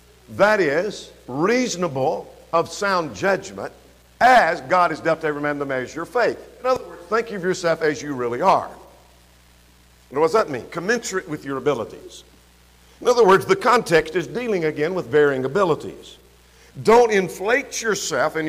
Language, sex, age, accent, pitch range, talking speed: English, male, 50-69, American, 135-205 Hz, 160 wpm